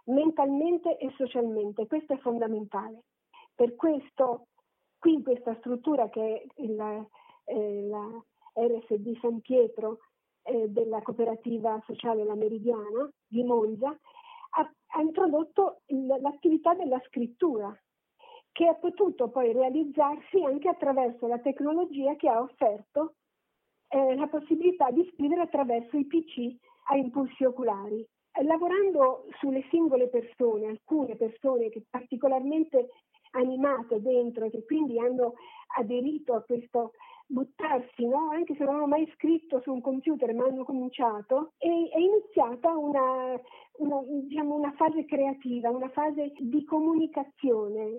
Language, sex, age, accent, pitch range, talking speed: Italian, female, 50-69, native, 240-315 Hz, 125 wpm